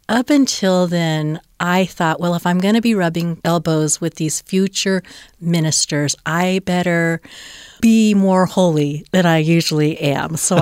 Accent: American